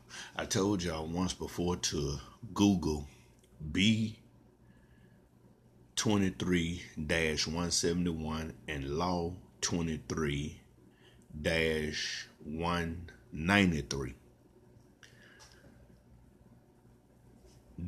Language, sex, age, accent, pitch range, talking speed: English, male, 50-69, American, 75-95 Hz, 35 wpm